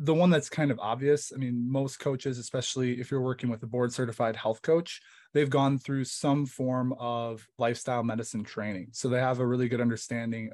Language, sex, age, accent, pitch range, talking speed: English, male, 20-39, American, 120-135 Hz, 200 wpm